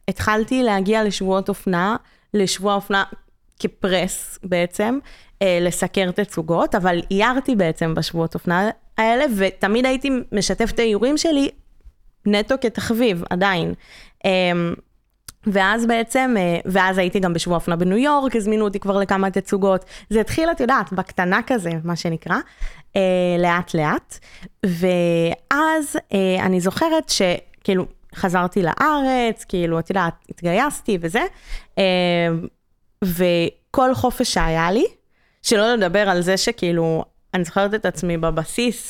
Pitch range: 180-235 Hz